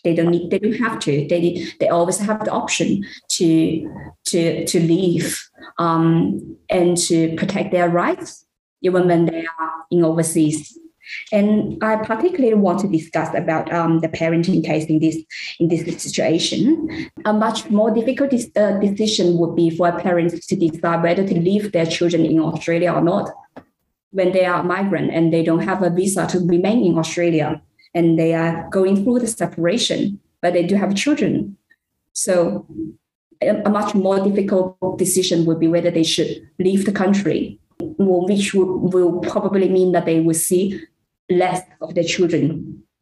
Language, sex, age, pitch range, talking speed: English, female, 20-39, 165-200 Hz, 165 wpm